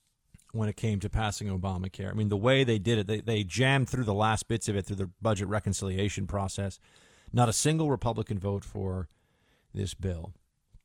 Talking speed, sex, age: 195 wpm, male, 40-59